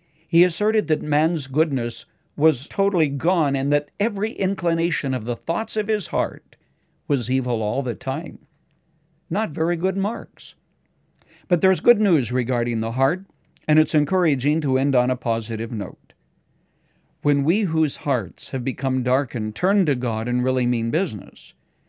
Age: 60-79